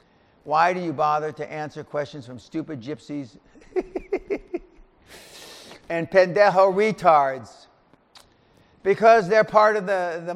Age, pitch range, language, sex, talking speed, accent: 50-69, 145-175 Hz, English, male, 110 wpm, American